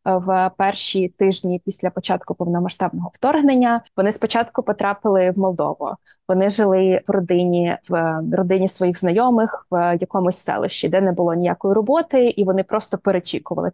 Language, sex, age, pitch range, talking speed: Ukrainian, female, 20-39, 180-205 Hz, 140 wpm